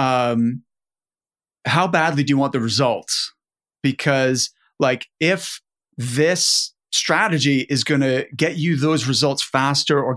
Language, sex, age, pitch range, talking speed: English, male, 30-49, 120-145 Hz, 130 wpm